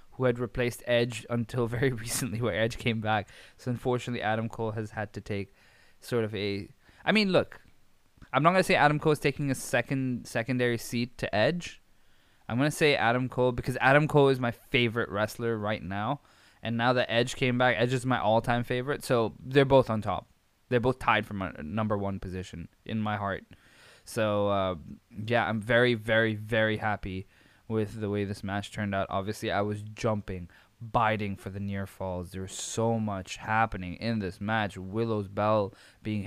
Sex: male